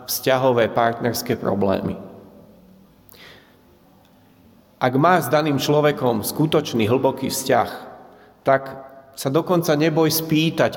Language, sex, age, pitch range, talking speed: Slovak, male, 40-59, 120-155 Hz, 90 wpm